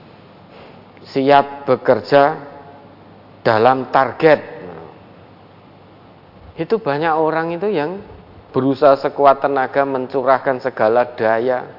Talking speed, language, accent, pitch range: 80 wpm, Indonesian, native, 115-155 Hz